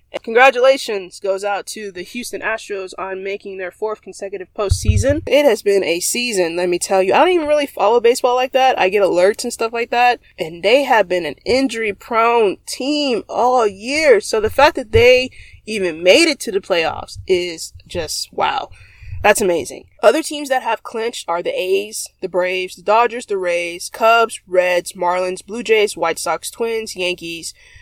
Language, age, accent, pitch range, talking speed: English, 20-39, American, 170-230 Hz, 185 wpm